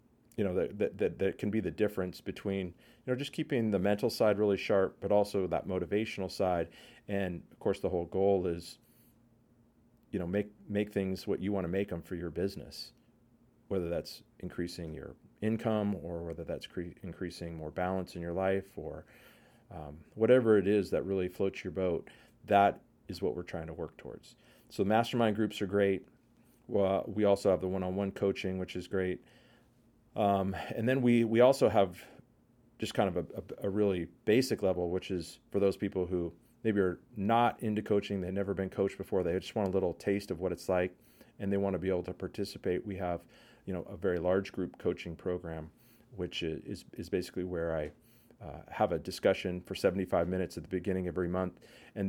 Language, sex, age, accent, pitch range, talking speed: English, male, 40-59, American, 90-110 Hz, 200 wpm